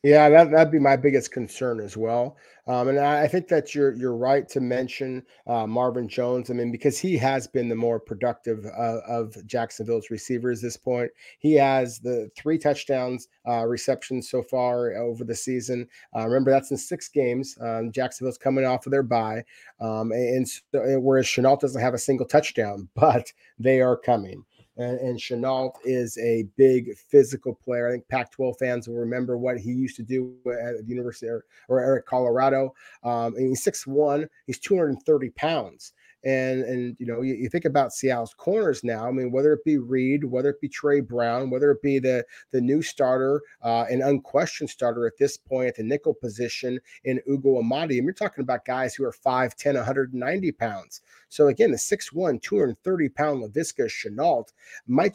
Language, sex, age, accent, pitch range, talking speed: English, male, 30-49, American, 120-140 Hz, 180 wpm